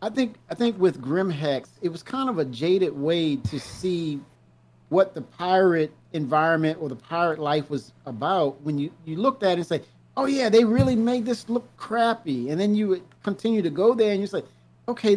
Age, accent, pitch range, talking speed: 50-69, American, 150-205 Hz, 215 wpm